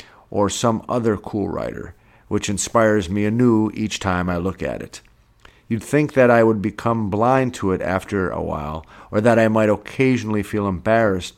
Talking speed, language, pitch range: 180 wpm, English, 100-120 Hz